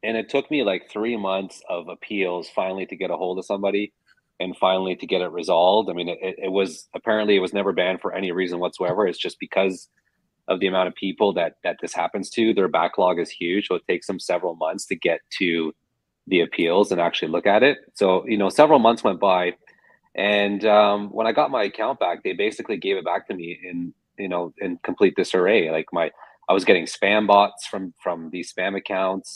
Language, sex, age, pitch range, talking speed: English, male, 30-49, 95-105 Hz, 225 wpm